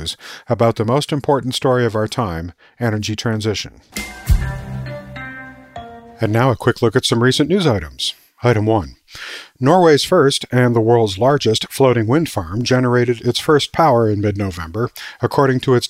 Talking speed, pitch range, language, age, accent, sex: 150 wpm, 110-130 Hz, English, 50-69, American, male